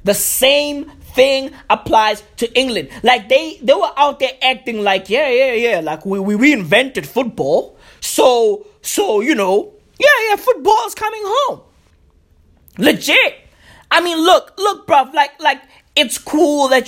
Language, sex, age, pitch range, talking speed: English, male, 30-49, 240-370 Hz, 155 wpm